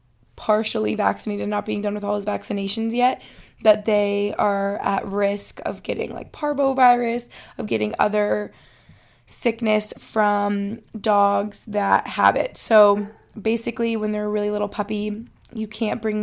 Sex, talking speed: female, 145 wpm